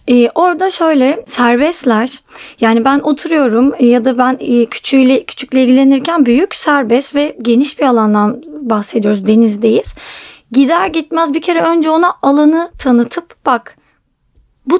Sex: female